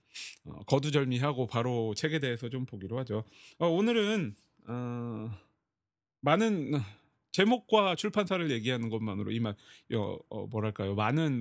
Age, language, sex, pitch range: 30-49, Korean, male, 110-155 Hz